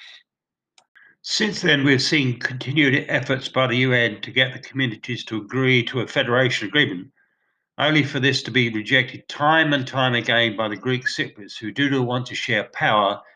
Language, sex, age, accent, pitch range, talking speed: English, male, 50-69, British, 115-140 Hz, 180 wpm